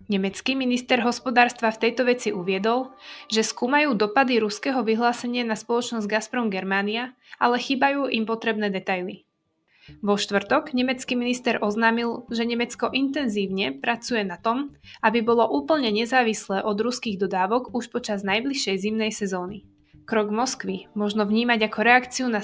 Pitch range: 210-245 Hz